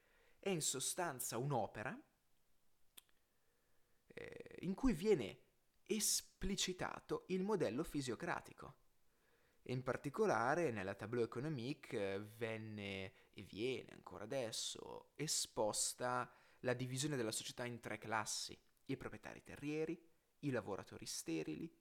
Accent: native